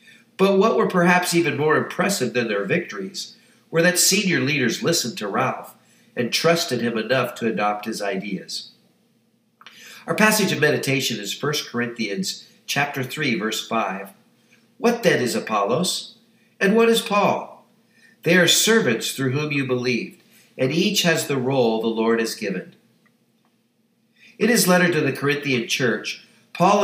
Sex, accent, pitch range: male, American, 120-195 Hz